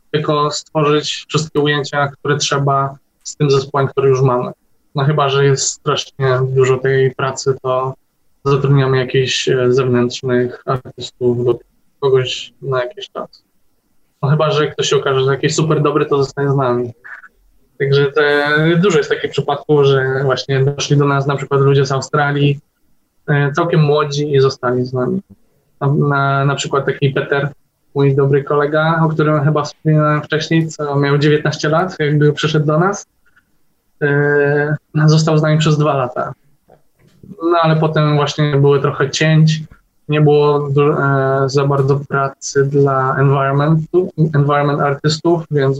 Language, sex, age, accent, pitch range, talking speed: Polish, male, 20-39, native, 135-150 Hz, 150 wpm